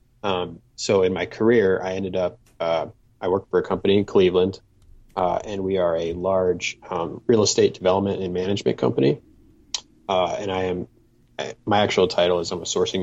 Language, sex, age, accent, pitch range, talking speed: English, male, 20-39, American, 90-115 Hz, 190 wpm